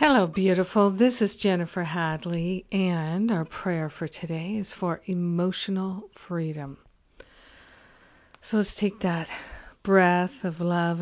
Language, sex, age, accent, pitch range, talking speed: English, female, 50-69, American, 170-185 Hz, 120 wpm